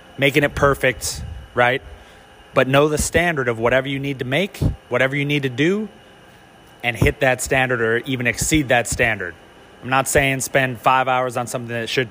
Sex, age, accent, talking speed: male, 30-49, American, 190 wpm